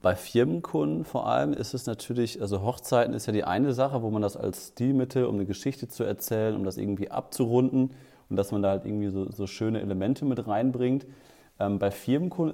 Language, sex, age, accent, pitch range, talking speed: German, male, 30-49, German, 95-120 Hz, 205 wpm